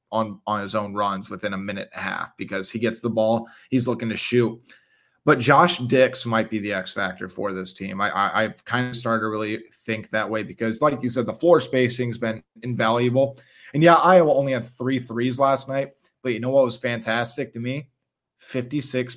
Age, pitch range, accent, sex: 30-49, 115-130 Hz, American, male